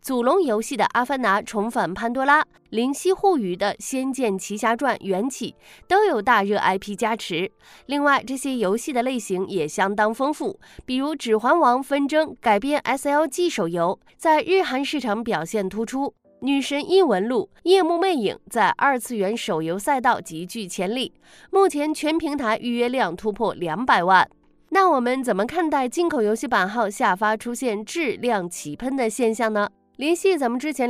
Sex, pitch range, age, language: female, 200-280 Hz, 20-39, Chinese